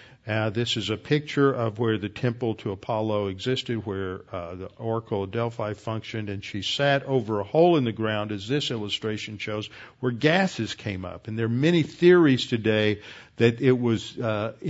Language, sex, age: English, male, 50-69